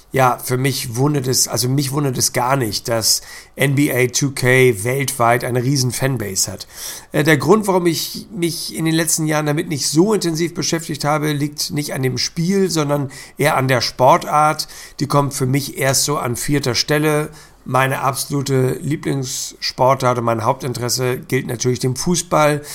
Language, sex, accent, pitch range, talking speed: German, male, German, 125-155 Hz, 165 wpm